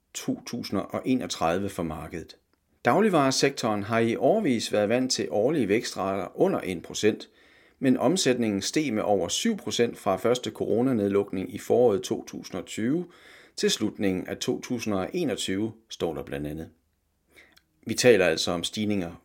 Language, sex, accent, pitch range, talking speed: Danish, male, native, 90-120 Hz, 120 wpm